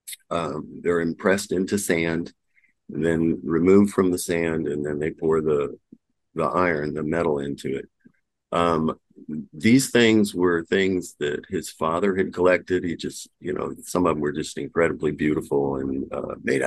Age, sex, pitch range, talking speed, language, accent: 50-69, male, 75-90 Hz, 160 wpm, English, American